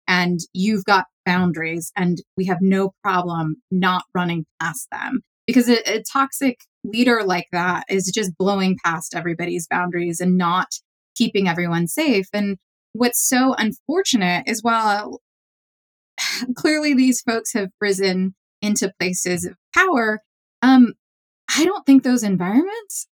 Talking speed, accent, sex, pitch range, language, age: 135 wpm, American, female, 180-230 Hz, English, 20-39